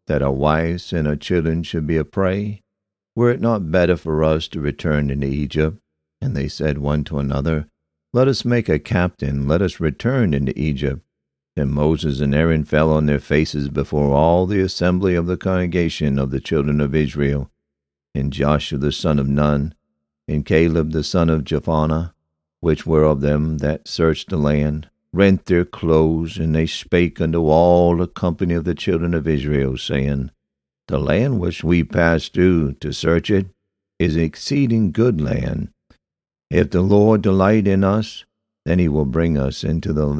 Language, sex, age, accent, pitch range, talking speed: English, male, 60-79, American, 75-95 Hz, 175 wpm